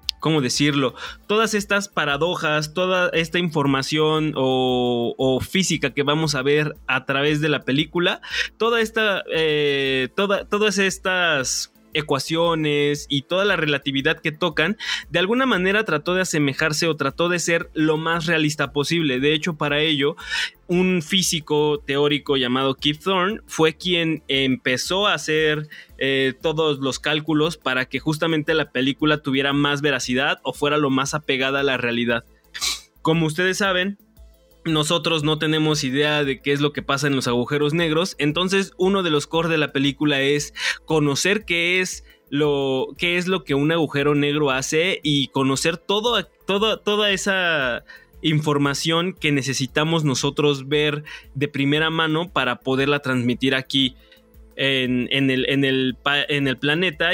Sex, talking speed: male, 155 wpm